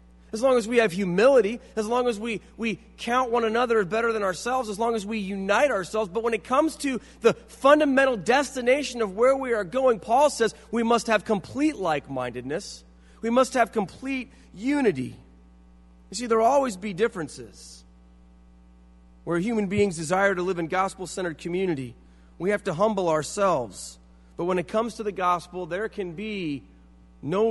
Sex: male